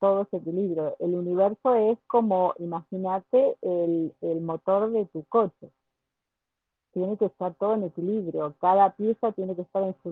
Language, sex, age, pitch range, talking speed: Spanish, female, 40-59, 175-205 Hz, 160 wpm